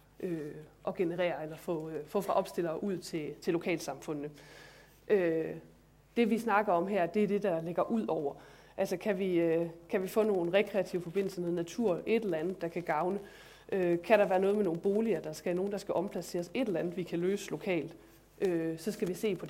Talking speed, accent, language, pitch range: 220 wpm, native, Danish, 170-210 Hz